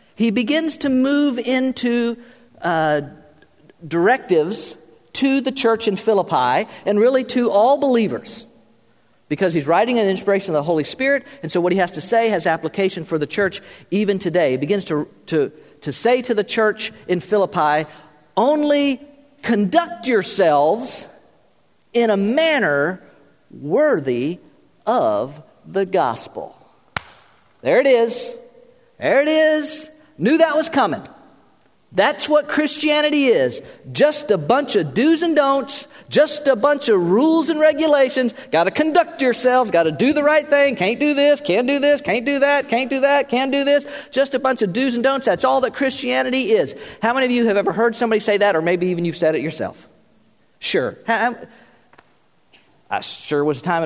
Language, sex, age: English, male, 50-69